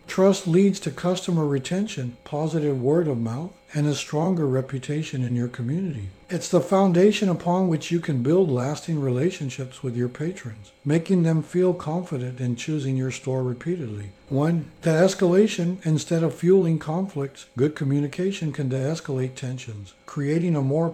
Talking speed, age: 150 wpm, 60-79